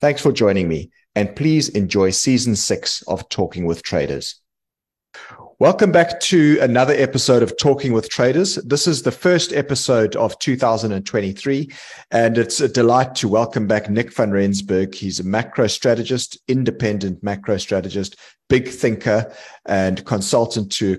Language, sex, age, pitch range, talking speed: English, male, 30-49, 95-115 Hz, 150 wpm